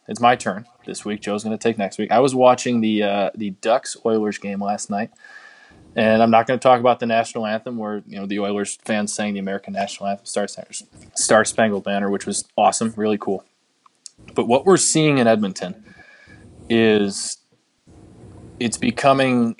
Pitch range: 100-120 Hz